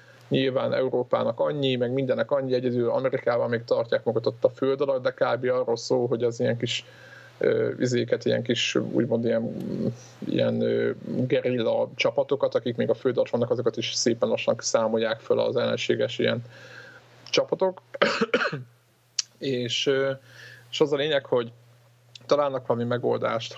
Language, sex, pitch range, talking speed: Hungarian, male, 115-135 Hz, 145 wpm